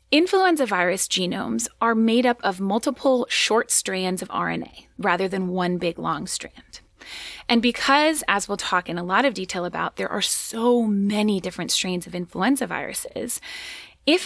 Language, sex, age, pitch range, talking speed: English, female, 20-39, 185-245 Hz, 165 wpm